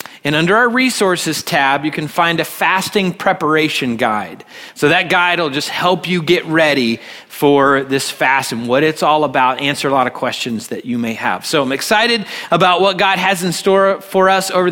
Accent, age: American, 30-49